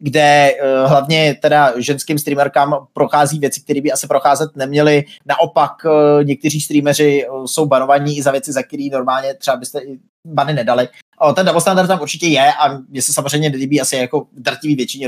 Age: 20-39